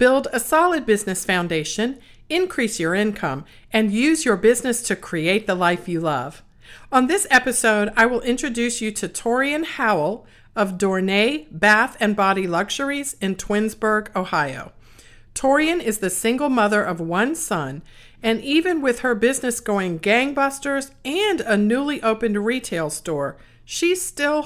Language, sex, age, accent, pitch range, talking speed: English, female, 50-69, American, 180-250 Hz, 145 wpm